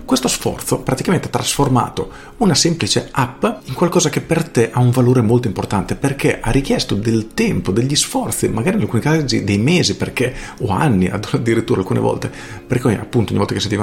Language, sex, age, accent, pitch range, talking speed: Italian, male, 40-59, native, 105-135 Hz, 185 wpm